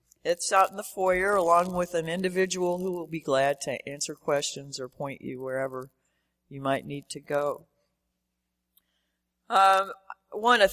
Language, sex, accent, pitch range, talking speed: English, female, American, 150-210 Hz, 155 wpm